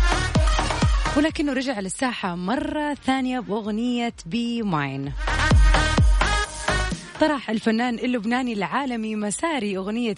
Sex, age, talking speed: female, 30-49, 85 wpm